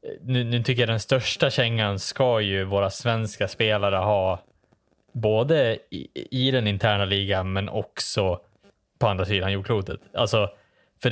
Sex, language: male, Swedish